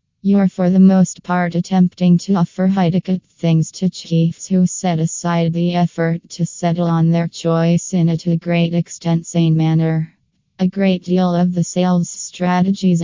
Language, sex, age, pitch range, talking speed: English, female, 20-39, 165-180 Hz, 160 wpm